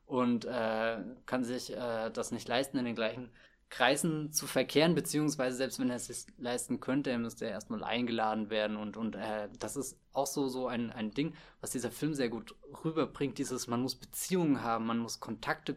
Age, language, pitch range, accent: 20-39, German, 125-150 Hz, German